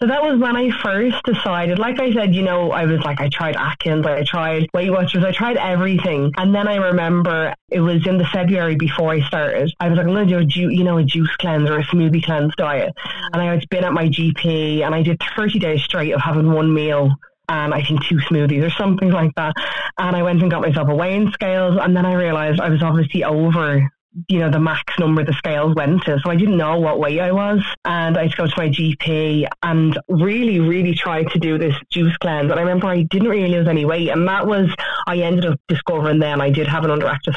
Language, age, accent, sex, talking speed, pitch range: English, 20-39, Irish, female, 250 wpm, 155-180 Hz